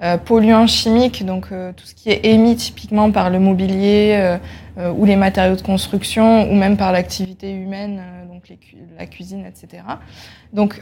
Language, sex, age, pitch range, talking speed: French, female, 20-39, 190-220 Hz, 175 wpm